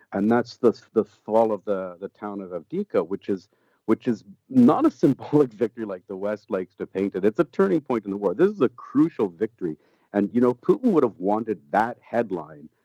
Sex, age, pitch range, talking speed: male, 50-69, 100-135 Hz, 220 wpm